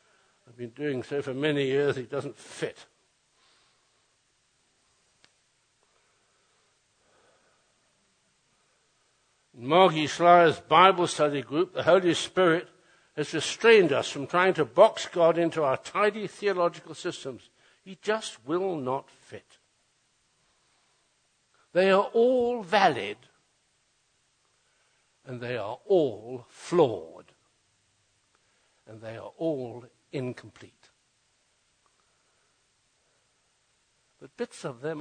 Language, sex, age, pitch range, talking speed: English, male, 60-79, 130-190 Hz, 95 wpm